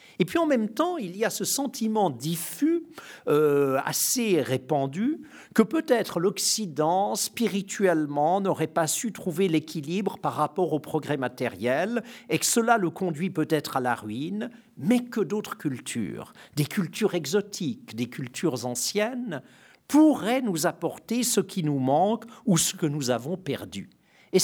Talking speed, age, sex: 150 wpm, 50-69, male